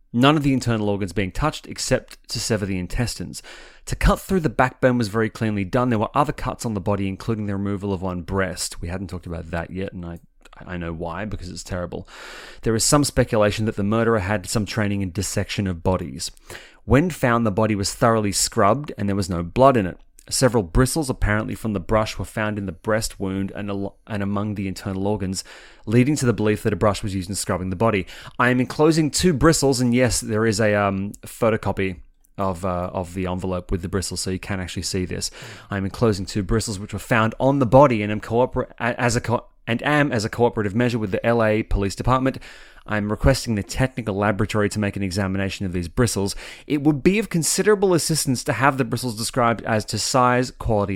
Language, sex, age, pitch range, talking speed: English, male, 30-49, 100-125 Hz, 225 wpm